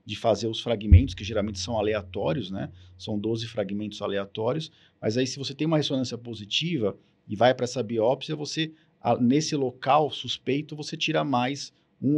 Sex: male